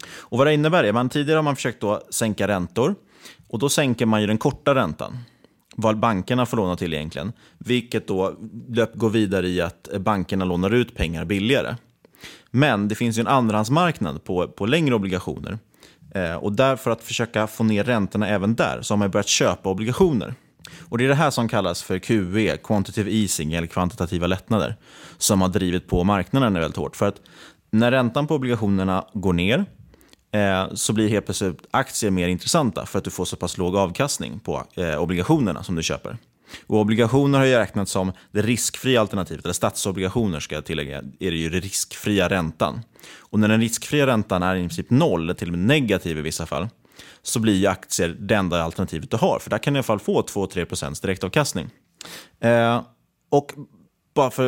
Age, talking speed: 30-49, 195 wpm